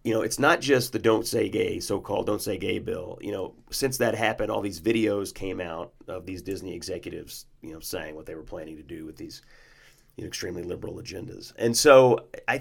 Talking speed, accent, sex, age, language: 215 wpm, American, male, 30-49, English